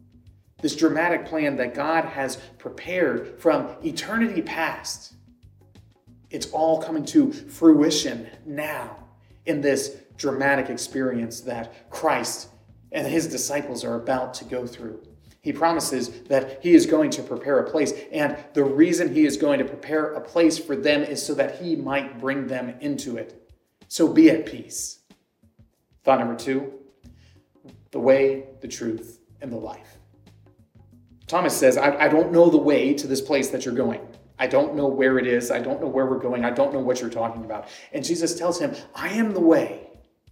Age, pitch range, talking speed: 30-49, 120-160 Hz, 175 wpm